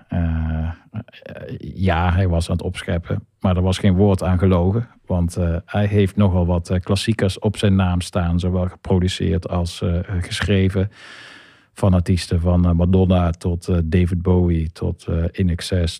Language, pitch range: Dutch, 85-100 Hz